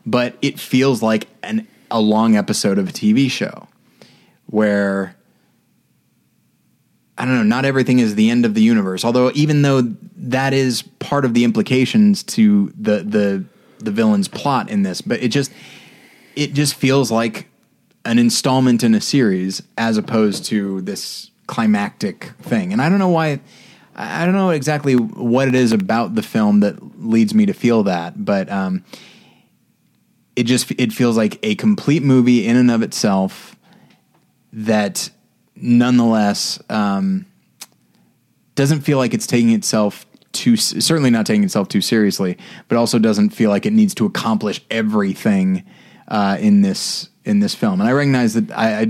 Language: English